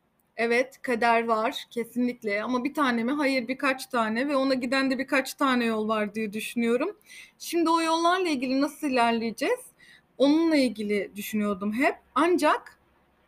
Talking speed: 145 wpm